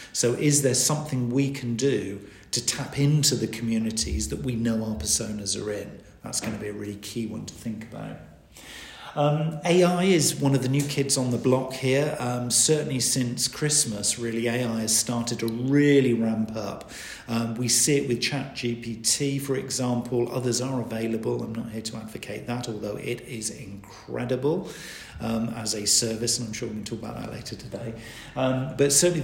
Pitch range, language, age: 115-140 Hz, English, 50-69